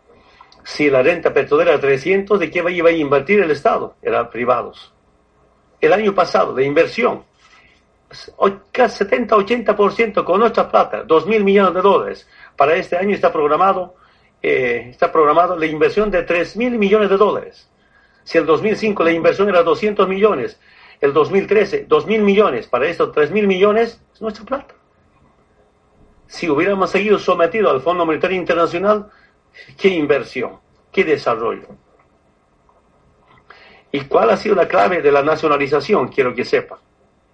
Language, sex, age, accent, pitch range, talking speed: Spanish, male, 50-69, Mexican, 170-225 Hz, 145 wpm